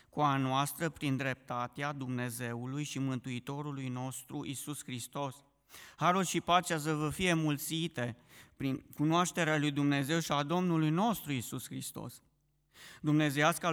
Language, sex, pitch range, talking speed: Romanian, male, 135-155 Hz, 125 wpm